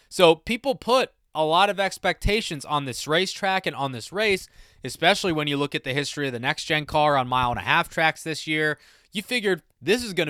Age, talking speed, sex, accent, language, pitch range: 20-39, 205 wpm, male, American, English, 135-170 Hz